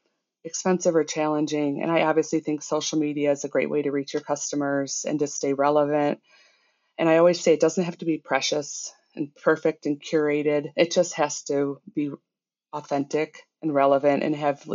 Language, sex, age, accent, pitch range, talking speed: English, female, 30-49, American, 140-160 Hz, 185 wpm